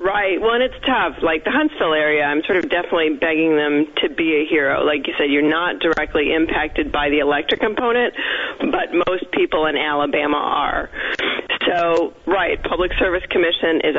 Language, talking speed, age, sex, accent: English, 180 wpm, 40-59, female, American